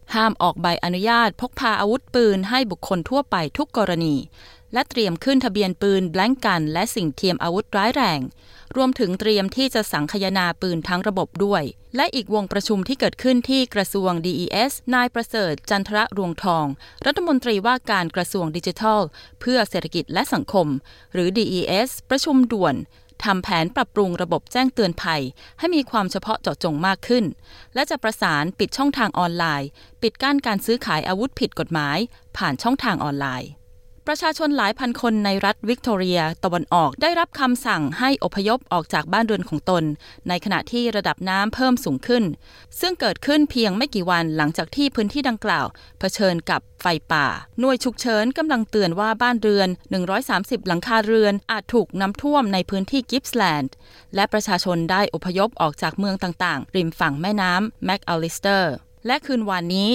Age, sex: 20-39, female